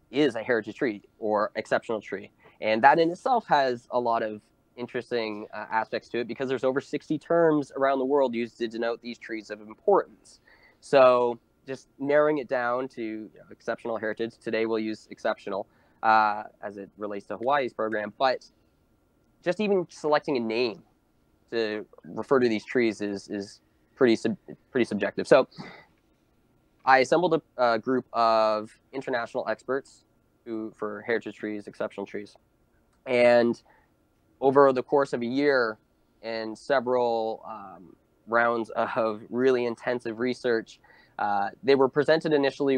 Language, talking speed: English, 150 wpm